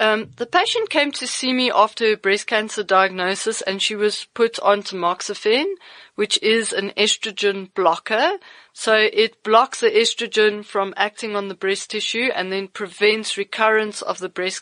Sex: female